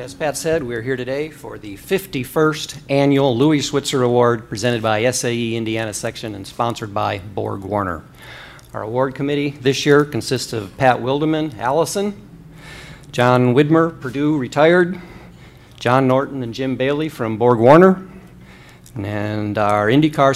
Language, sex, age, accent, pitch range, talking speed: English, male, 50-69, American, 115-145 Hz, 140 wpm